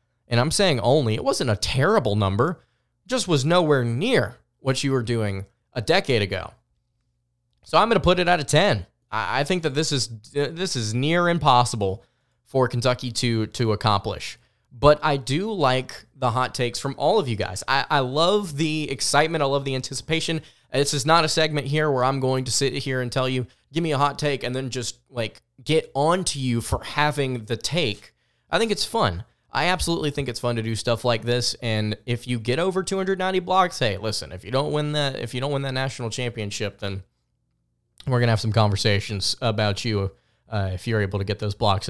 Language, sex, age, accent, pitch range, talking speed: English, male, 20-39, American, 110-145 Hz, 210 wpm